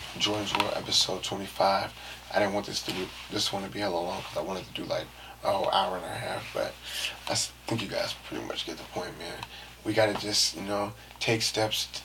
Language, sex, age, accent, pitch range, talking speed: English, male, 20-39, American, 95-110 Hz, 240 wpm